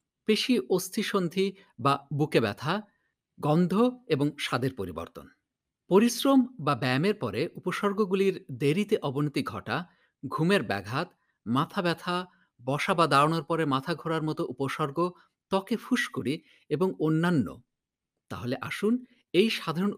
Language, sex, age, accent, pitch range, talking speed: English, male, 50-69, Indian, 145-205 Hz, 95 wpm